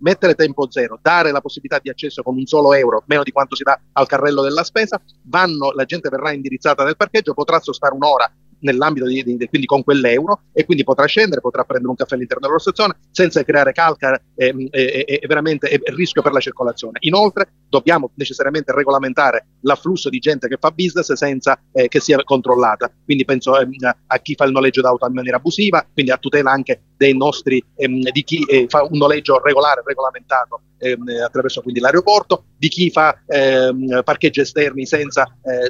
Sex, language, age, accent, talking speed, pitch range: male, Italian, 40-59, native, 195 wpm, 135-160 Hz